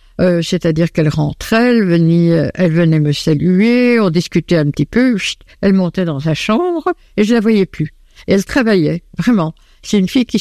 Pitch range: 160-210 Hz